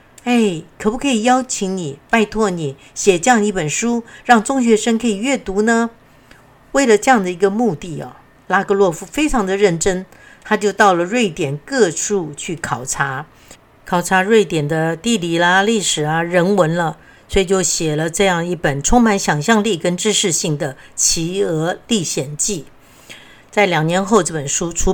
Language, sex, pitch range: Chinese, female, 155-210 Hz